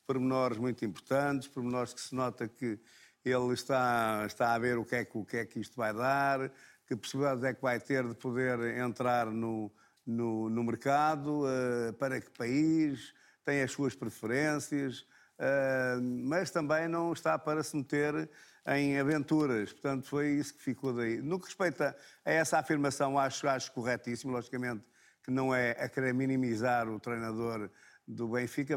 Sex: male